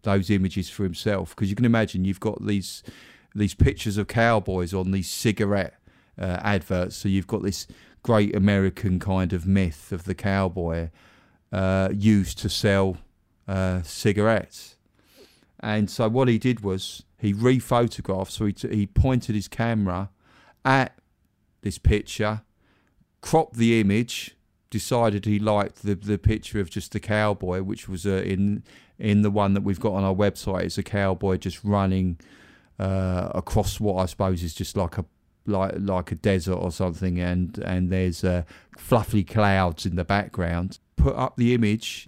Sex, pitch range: male, 95-110 Hz